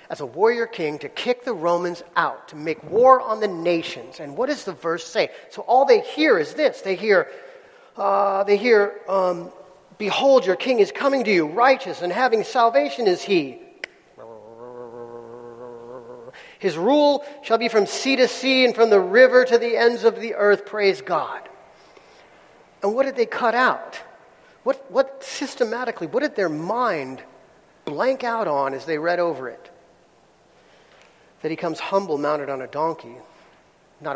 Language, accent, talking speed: English, American, 170 wpm